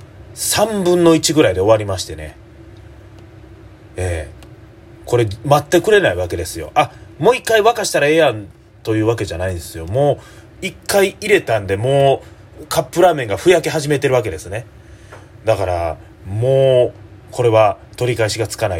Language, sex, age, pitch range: Japanese, male, 30-49, 95-125 Hz